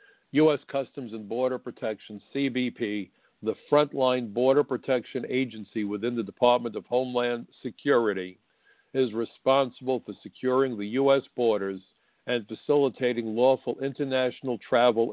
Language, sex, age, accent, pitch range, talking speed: English, male, 50-69, American, 120-140 Hz, 115 wpm